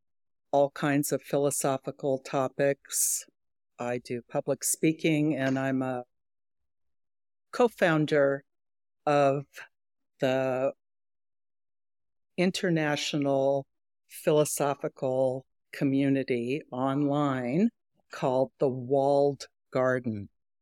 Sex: female